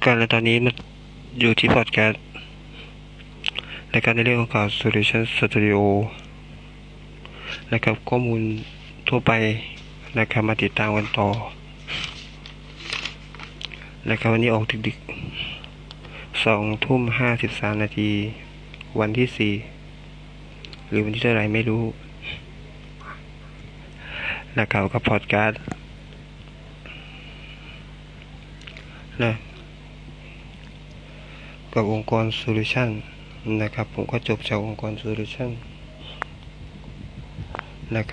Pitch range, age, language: 105-115 Hz, 20-39, Thai